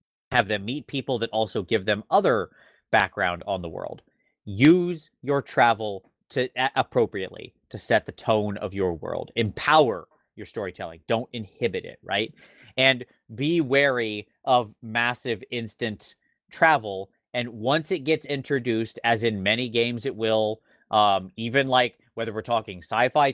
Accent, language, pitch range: American, English, 110-140 Hz